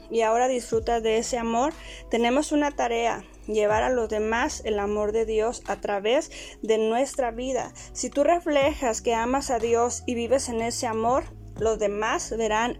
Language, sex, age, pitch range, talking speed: Spanish, female, 20-39, 220-265 Hz, 175 wpm